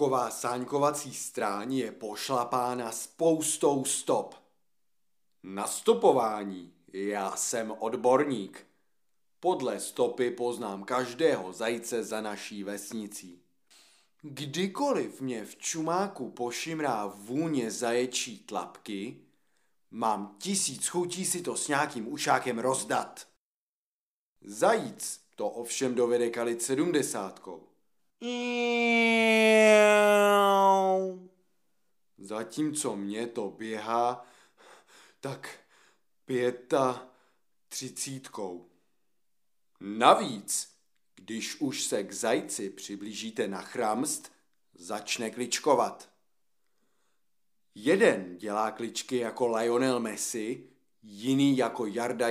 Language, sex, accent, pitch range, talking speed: Czech, male, native, 110-155 Hz, 80 wpm